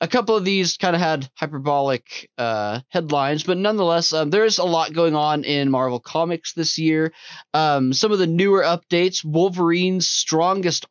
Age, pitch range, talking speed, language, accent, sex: 20-39, 145-180 Hz, 175 wpm, English, American, male